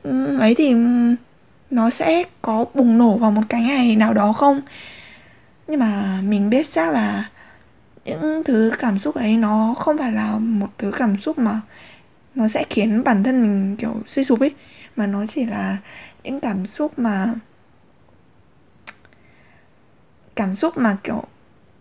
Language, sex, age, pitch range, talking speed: Vietnamese, female, 20-39, 210-270 Hz, 155 wpm